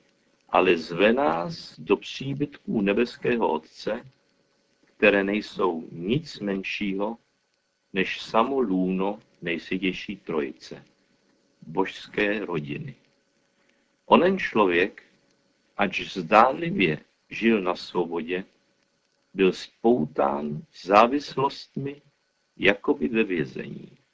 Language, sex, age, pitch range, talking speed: Czech, male, 50-69, 95-125 Hz, 80 wpm